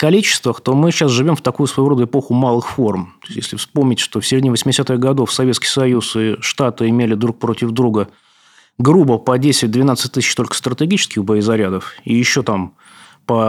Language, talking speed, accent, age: Russian, 170 wpm, native, 20-39